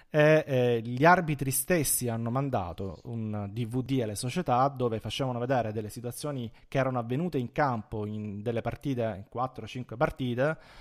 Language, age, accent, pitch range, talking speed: Italian, 30-49, native, 120-150 Hz, 145 wpm